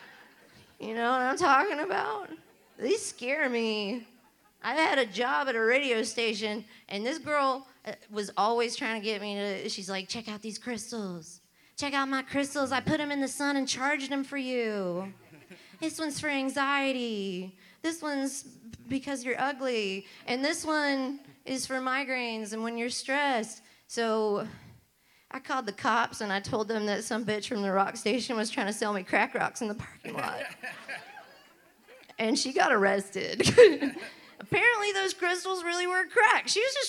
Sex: female